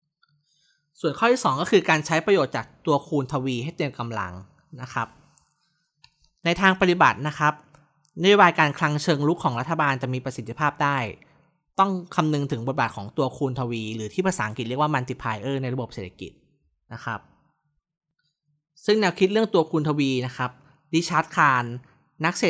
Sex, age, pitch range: male, 20-39, 125-160 Hz